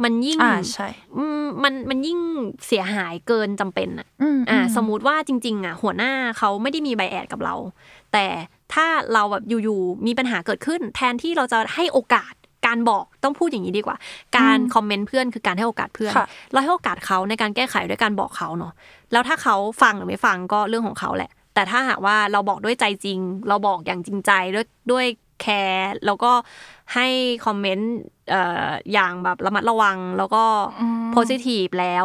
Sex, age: female, 20-39